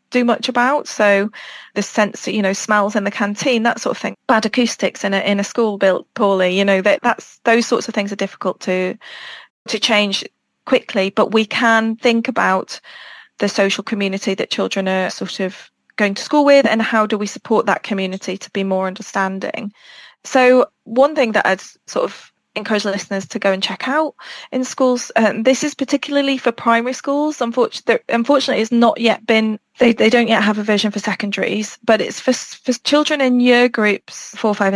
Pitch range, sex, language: 200-250 Hz, female, English